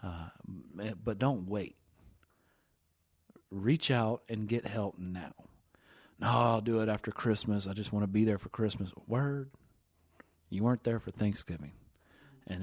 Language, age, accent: English, 30-49, American